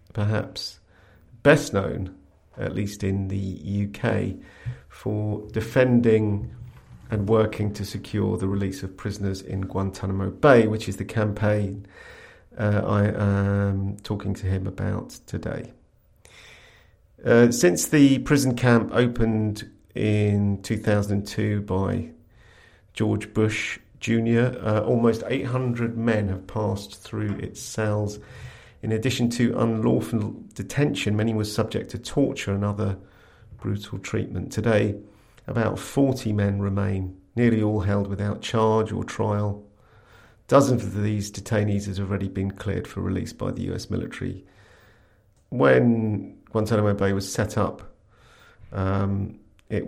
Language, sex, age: English, male, 50-69